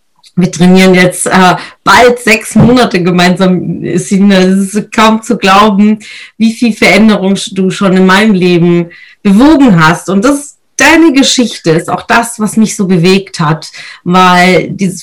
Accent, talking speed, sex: German, 145 wpm, female